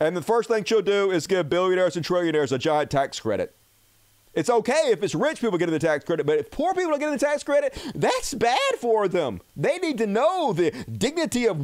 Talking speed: 230 wpm